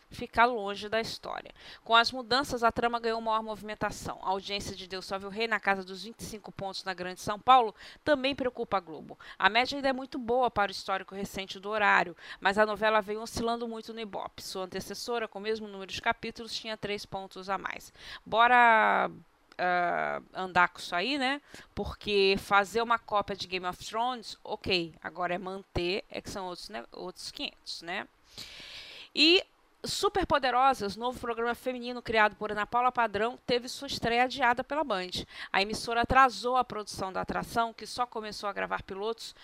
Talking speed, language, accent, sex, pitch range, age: 185 wpm, Portuguese, Brazilian, female, 195-235 Hz, 20-39